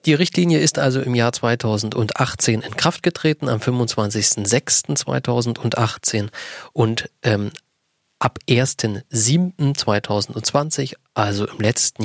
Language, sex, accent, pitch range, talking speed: German, male, German, 105-125 Hz, 95 wpm